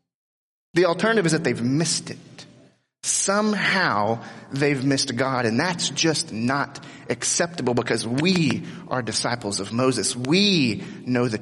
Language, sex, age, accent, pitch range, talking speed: English, male, 30-49, American, 125-170 Hz, 130 wpm